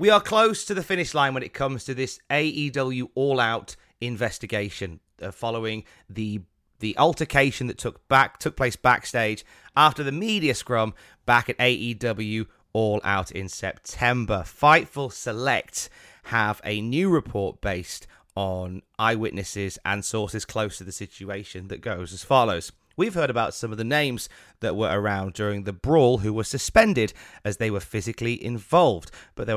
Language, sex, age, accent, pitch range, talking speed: English, male, 30-49, British, 100-135 Hz, 160 wpm